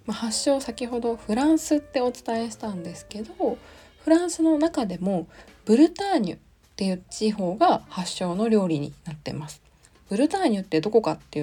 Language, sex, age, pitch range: Japanese, female, 20-39, 180-295 Hz